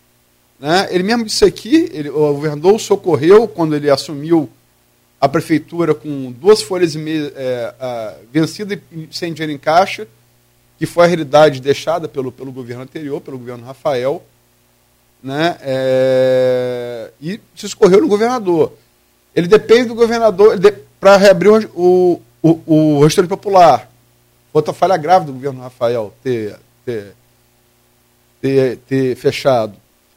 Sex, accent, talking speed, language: male, Brazilian, 135 wpm, Portuguese